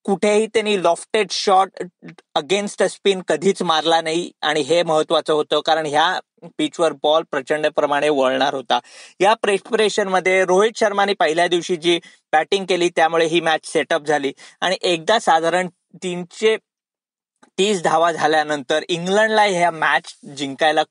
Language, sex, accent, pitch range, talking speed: Marathi, male, native, 165-215 Hz, 140 wpm